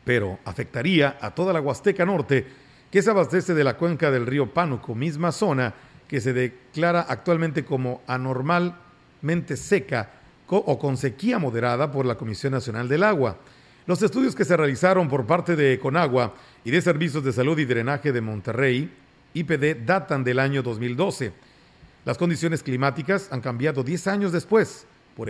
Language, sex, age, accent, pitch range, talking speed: Spanish, male, 50-69, Mexican, 130-170 Hz, 160 wpm